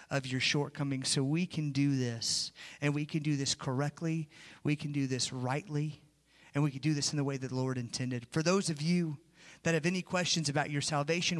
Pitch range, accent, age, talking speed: 135-160 Hz, American, 40-59, 220 wpm